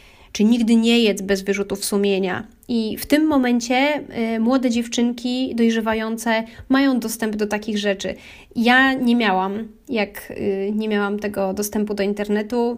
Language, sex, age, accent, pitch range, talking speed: Polish, female, 20-39, native, 205-255 Hz, 135 wpm